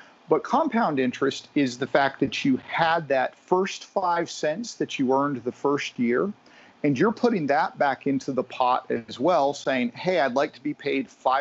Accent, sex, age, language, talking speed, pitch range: American, male, 40-59, English, 190 wpm, 130-195 Hz